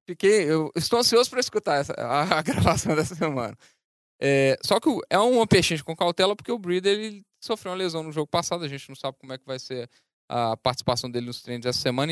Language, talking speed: Portuguese, 225 wpm